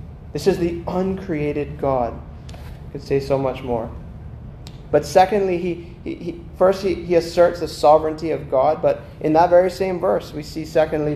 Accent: American